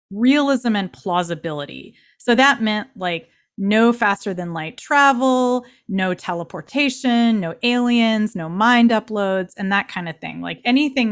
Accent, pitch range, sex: American, 180-245 Hz, female